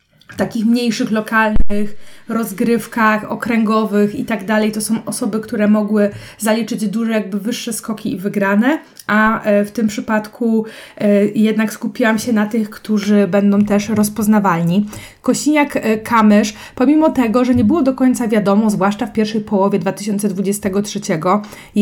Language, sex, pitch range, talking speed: Polish, female, 195-225 Hz, 135 wpm